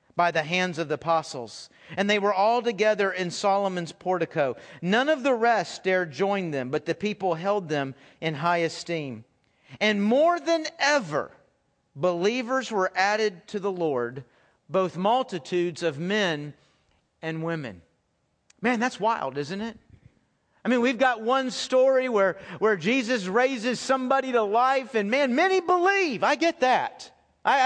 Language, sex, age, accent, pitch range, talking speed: English, male, 40-59, American, 180-270 Hz, 155 wpm